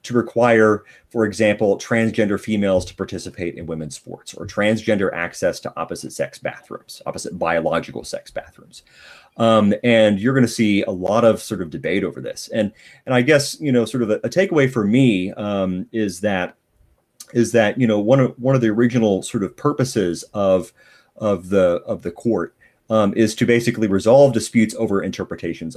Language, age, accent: English, 30-49, American